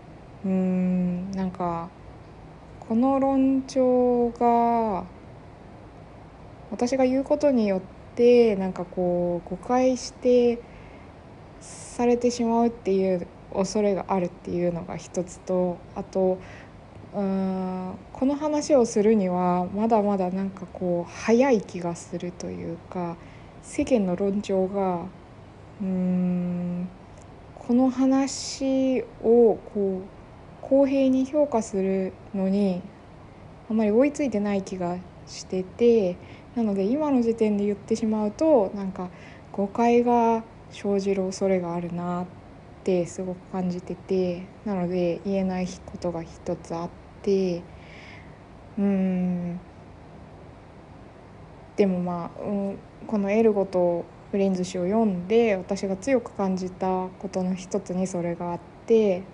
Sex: female